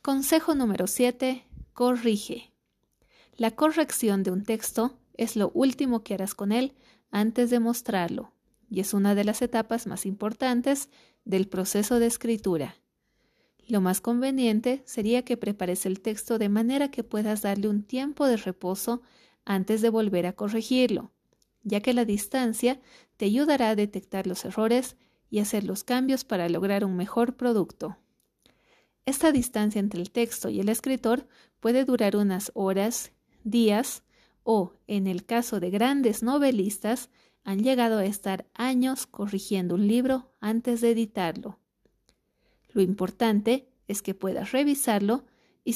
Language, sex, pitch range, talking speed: Spanish, female, 205-250 Hz, 145 wpm